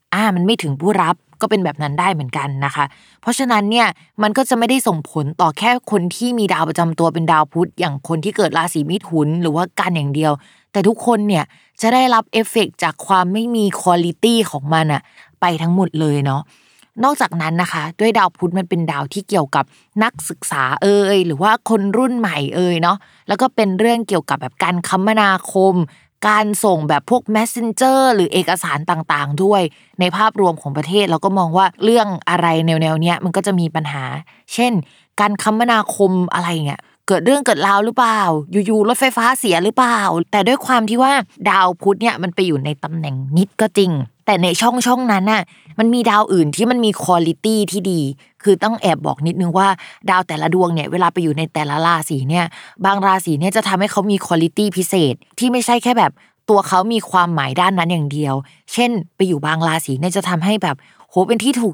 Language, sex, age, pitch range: Thai, female, 20-39, 165-215 Hz